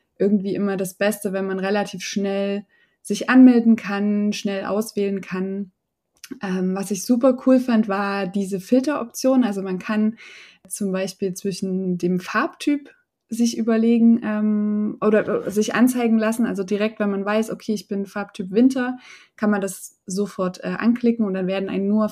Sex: female